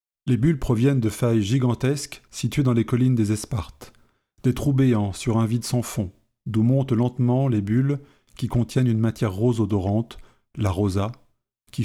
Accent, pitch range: French, 110-135 Hz